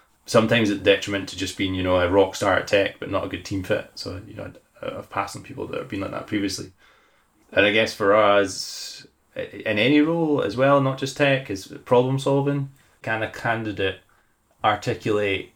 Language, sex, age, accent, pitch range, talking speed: English, male, 20-39, British, 95-110 Hz, 200 wpm